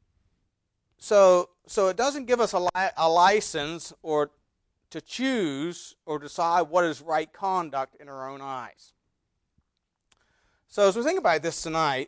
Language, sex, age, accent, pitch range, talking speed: English, male, 40-59, American, 135-170 Hz, 150 wpm